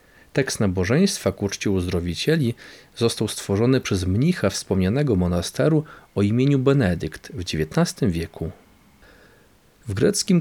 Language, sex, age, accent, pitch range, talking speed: Polish, male, 40-59, native, 95-140 Hz, 110 wpm